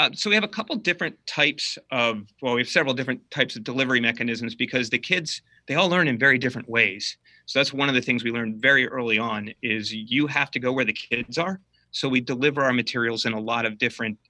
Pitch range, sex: 110-130 Hz, male